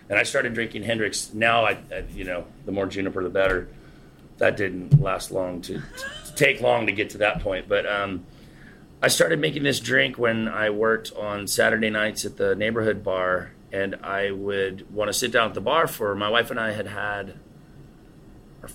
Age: 30-49